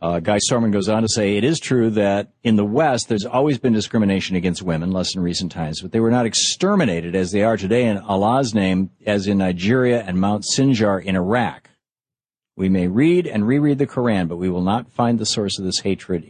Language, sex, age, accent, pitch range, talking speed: English, male, 50-69, American, 95-120 Hz, 225 wpm